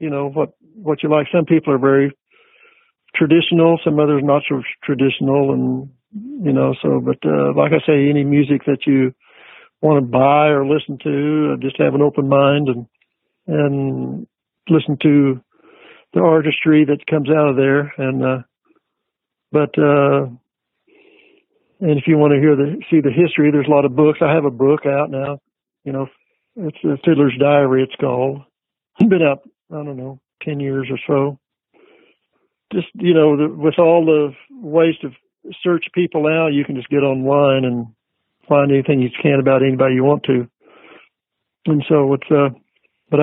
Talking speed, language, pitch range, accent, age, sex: 175 wpm, English, 135-155 Hz, American, 60-79, male